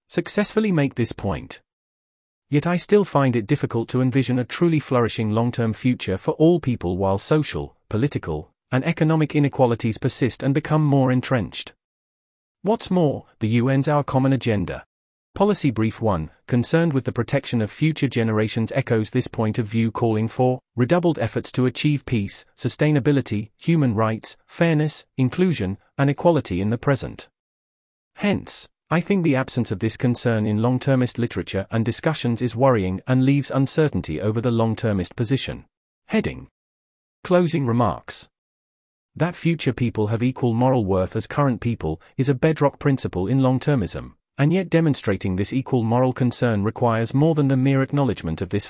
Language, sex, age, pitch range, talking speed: English, male, 40-59, 110-145 Hz, 155 wpm